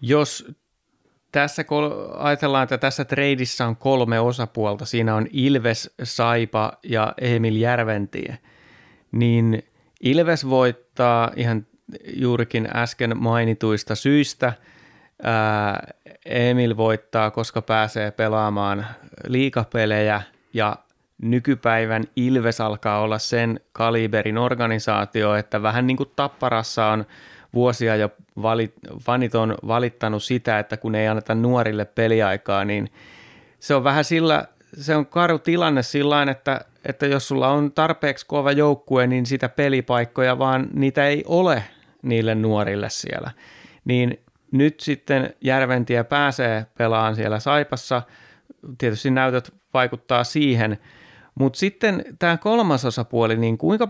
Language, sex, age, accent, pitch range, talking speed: Finnish, male, 30-49, native, 110-140 Hz, 115 wpm